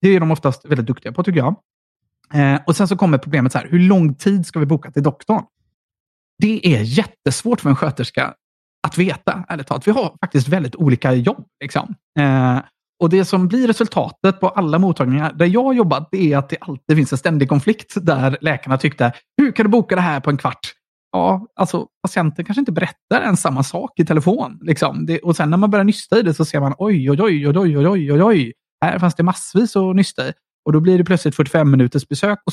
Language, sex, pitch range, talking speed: Swedish, male, 140-190 Hz, 220 wpm